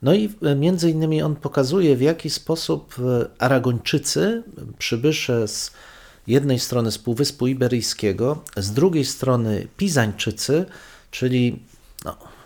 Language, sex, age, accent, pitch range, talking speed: Polish, male, 40-59, native, 110-140 Hz, 105 wpm